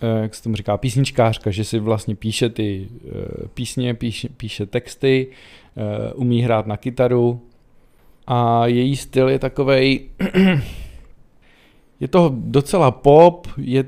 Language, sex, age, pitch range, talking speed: Czech, male, 40-59, 110-130 Hz, 120 wpm